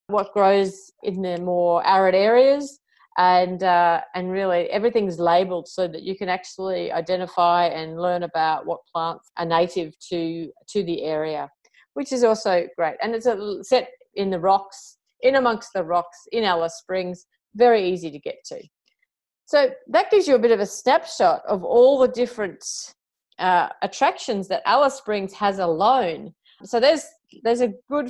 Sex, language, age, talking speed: female, English, 40-59, 165 wpm